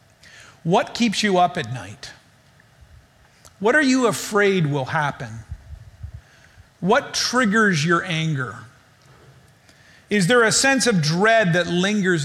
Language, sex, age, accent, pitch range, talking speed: English, male, 40-59, American, 140-220 Hz, 120 wpm